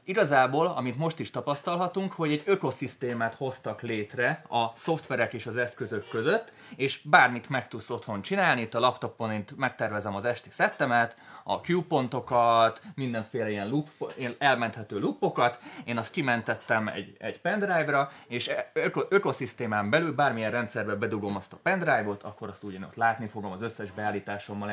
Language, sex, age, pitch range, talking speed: Hungarian, male, 20-39, 110-145 Hz, 145 wpm